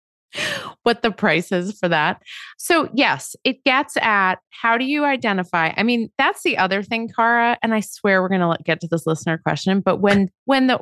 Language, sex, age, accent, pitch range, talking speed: English, female, 30-49, American, 160-210 Hz, 205 wpm